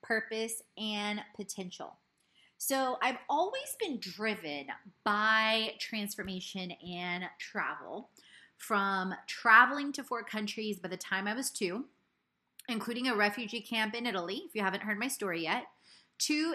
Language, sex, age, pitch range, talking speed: English, female, 30-49, 190-245 Hz, 135 wpm